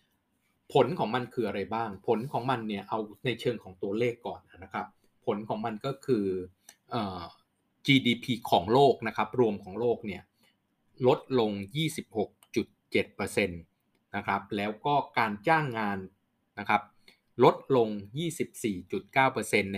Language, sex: Thai, male